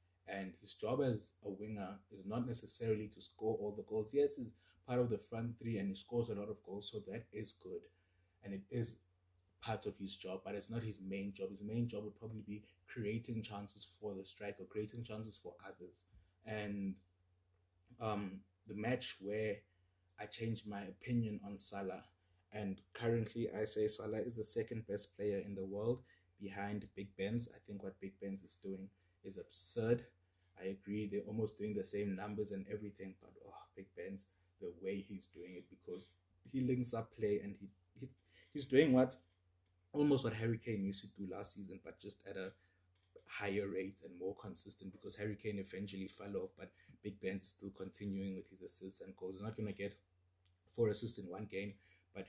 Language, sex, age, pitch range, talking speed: English, male, 20-39, 95-105 Hz, 195 wpm